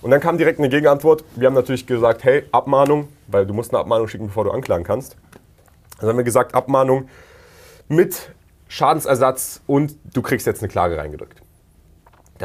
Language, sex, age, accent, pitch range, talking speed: German, male, 30-49, German, 100-135 Hz, 185 wpm